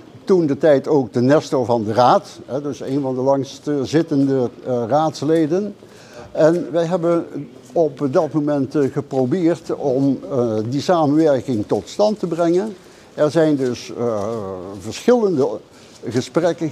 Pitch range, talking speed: 135-180 Hz, 125 wpm